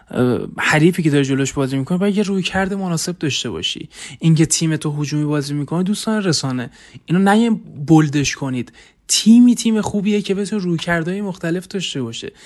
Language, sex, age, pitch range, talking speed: Persian, male, 20-39, 140-180 Hz, 170 wpm